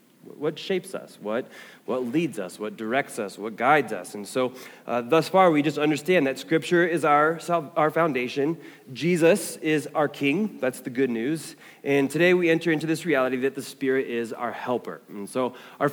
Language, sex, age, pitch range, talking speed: English, male, 30-49, 125-165 Hz, 190 wpm